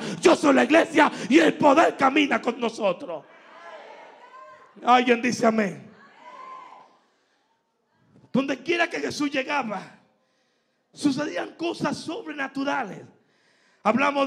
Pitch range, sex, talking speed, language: 250-295 Hz, male, 95 wpm, Spanish